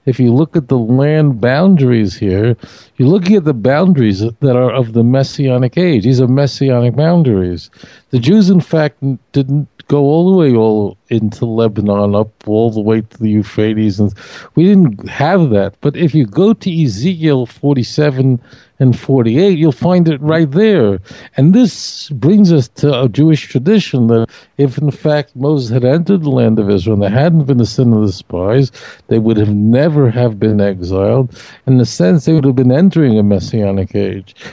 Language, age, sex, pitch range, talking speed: English, 50-69, male, 110-155 Hz, 185 wpm